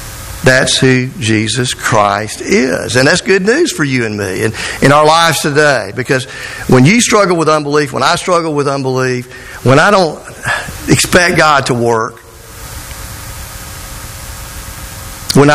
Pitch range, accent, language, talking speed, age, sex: 115-155 Hz, American, English, 145 wpm, 50-69, male